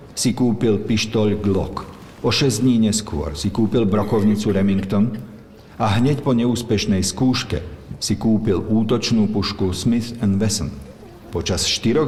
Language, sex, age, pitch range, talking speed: Slovak, male, 50-69, 95-115 Hz, 130 wpm